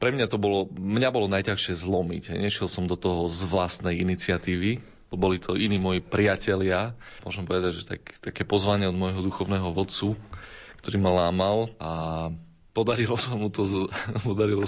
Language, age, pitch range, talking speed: Slovak, 30-49, 90-105 Hz, 145 wpm